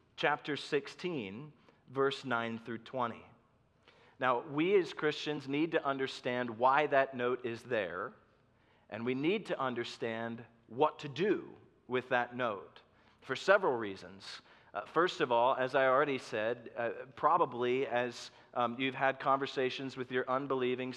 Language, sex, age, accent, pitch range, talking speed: English, male, 40-59, American, 125-155 Hz, 145 wpm